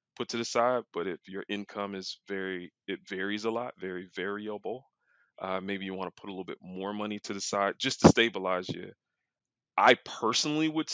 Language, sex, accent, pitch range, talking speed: English, male, American, 95-115 Hz, 195 wpm